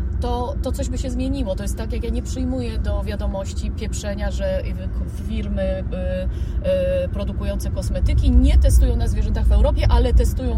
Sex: female